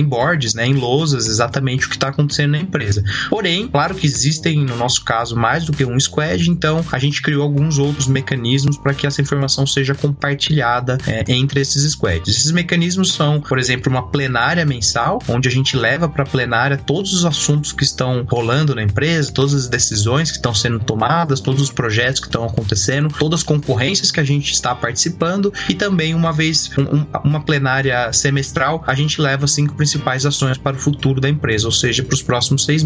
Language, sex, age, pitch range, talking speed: Portuguese, male, 20-39, 130-155 Hz, 205 wpm